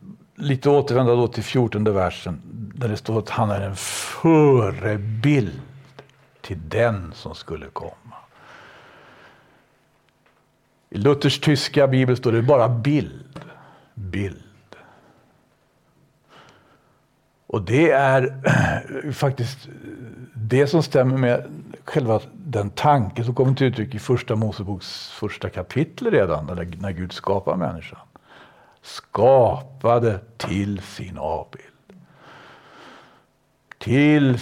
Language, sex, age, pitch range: Swedish, male, 60-79, 110-145 Hz